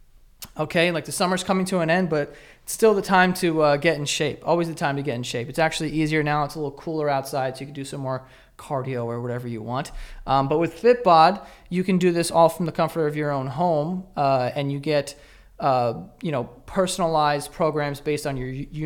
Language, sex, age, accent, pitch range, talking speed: English, male, 20-39, American, 135-160 Hz, 235 wpm